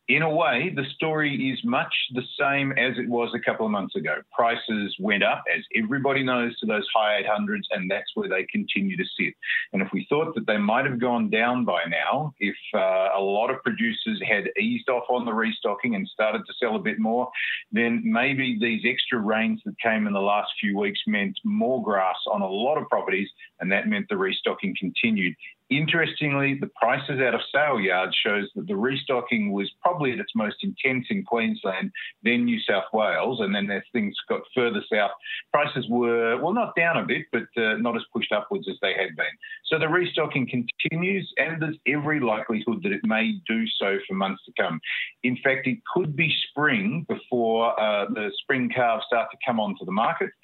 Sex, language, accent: male, English, Australian